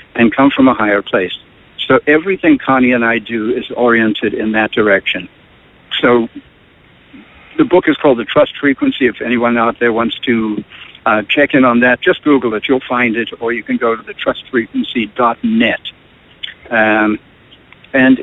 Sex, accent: male, American